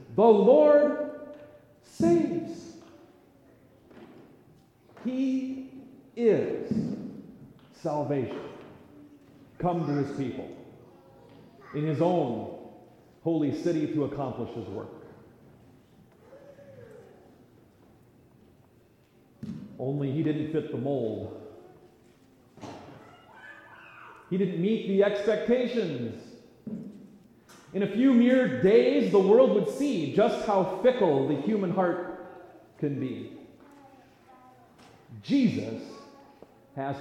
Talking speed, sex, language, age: 80 wpm, male, English, 40-59